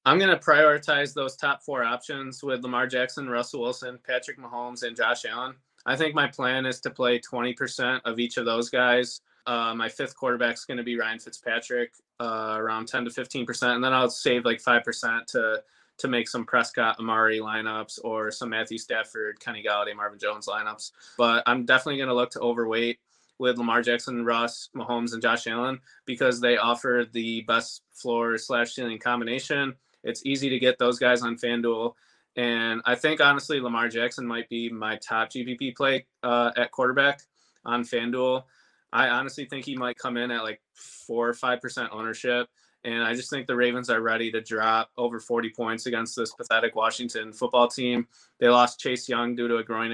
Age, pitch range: 20-39, 115-125 Hz